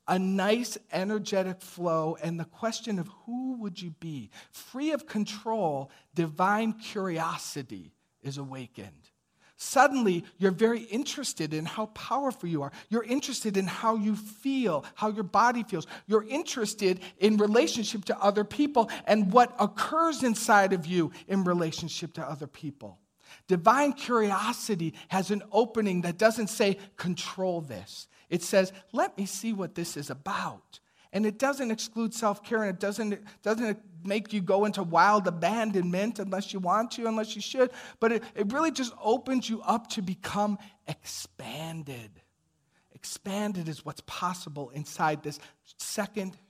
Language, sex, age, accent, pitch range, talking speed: English, male, 50-69, American, 165-220 Hz, 150 wpm